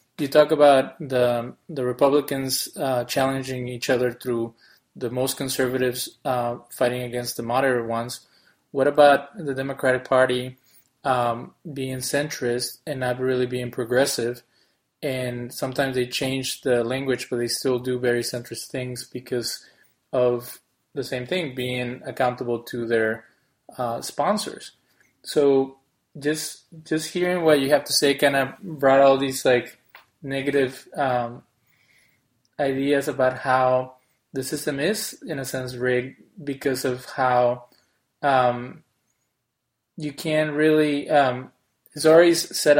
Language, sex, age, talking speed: English, male, 20-39, 135 wpm